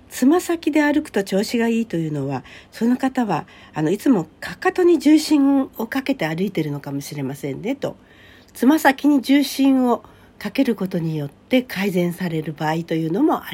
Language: Japanese